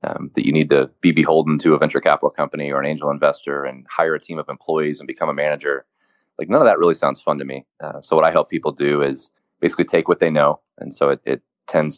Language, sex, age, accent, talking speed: English, male, 30-49, American, 265 wpm